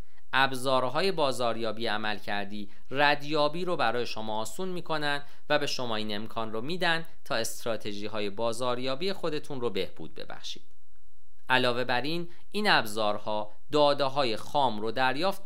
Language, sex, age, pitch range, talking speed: Persian, male, 40-59, 120-160 Hz, 130 wpm